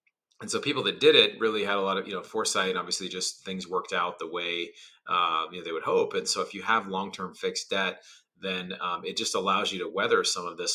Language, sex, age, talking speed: English, male, 30-49, 270 wpm